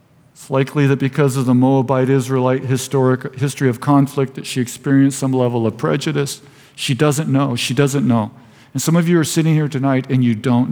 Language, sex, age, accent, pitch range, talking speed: English, male, 50-69, American, 125-150 Hz, 190 wpm